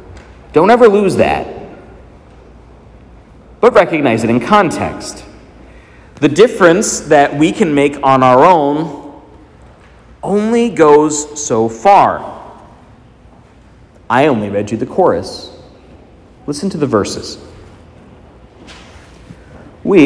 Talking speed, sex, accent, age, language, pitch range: 100 wpm, male, American, 50-69, English, 115-175 Hz